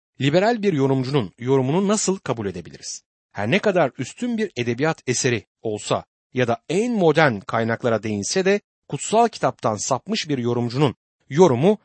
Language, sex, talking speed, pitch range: Turkish, male, 140 wpm, 120-190 Hz